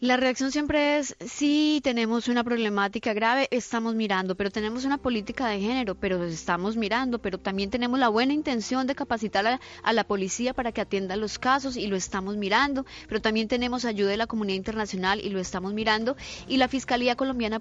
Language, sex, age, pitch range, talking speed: Spanish, female, 20-39, 195-250 Hz, 195 wpm